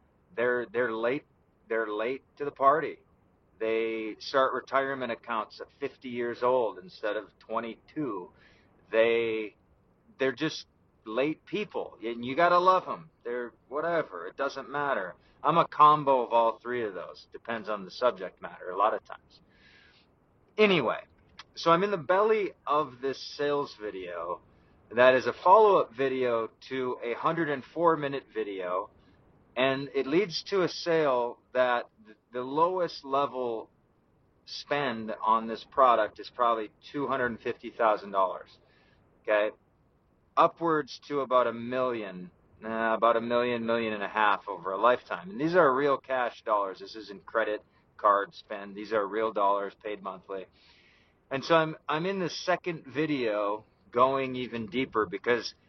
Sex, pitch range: male, 110-140 Hz